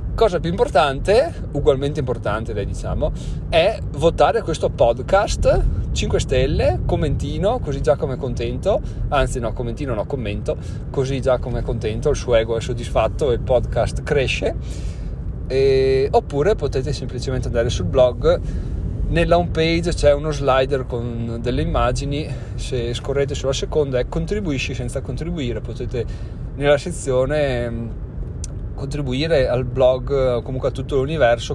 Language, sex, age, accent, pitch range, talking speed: Italian, male, 30-49, native, 120-140 Hz, 135 wpm